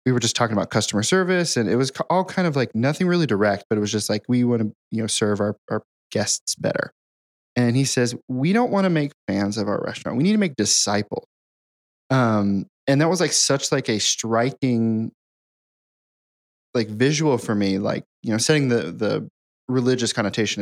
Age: 20-39